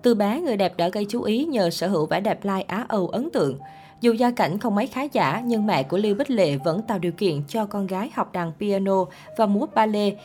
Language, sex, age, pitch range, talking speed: Vietnamese, female, 20-39, 180-235 Hz, 260 wpm